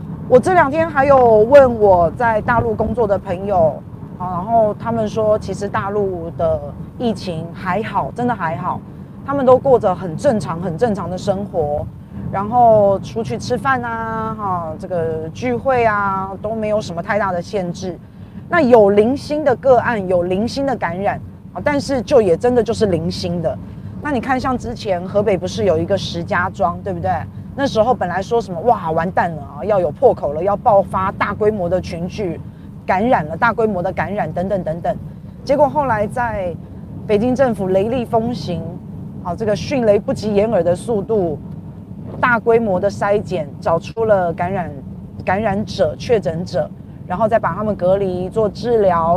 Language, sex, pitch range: Chinese, female, 175-230 Hz